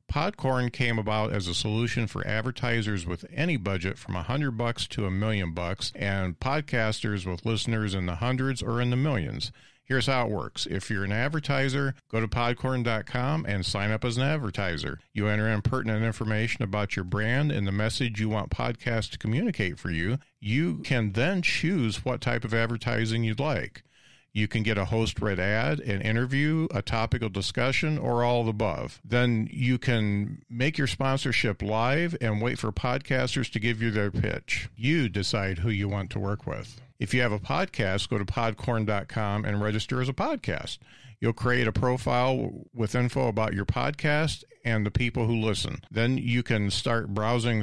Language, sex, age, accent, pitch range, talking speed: English, male, 50-69, American, 105-130 Hz, 185 wpm